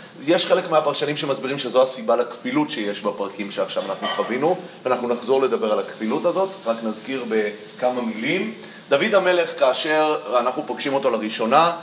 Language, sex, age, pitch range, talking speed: Hebrew, male, 30-49, 120-170 Hz, 145 wpm